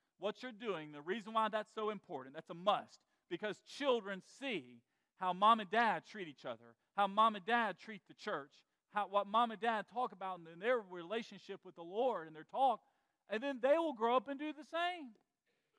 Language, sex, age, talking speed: English, male, 40-59, 210 wpm